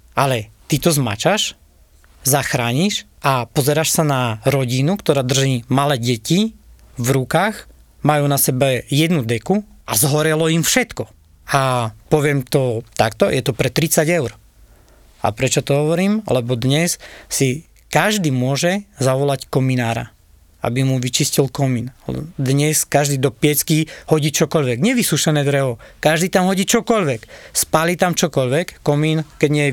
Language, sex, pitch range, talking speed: Slovak, male, 130-160 Hz, 135 wpm